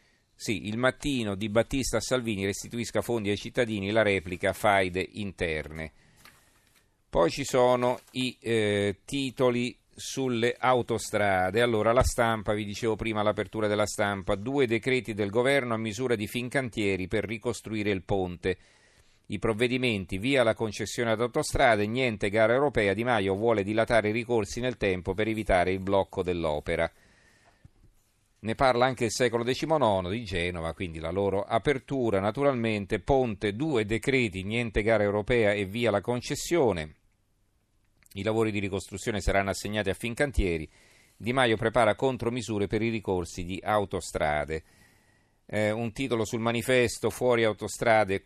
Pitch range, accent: 100-120 Hz, native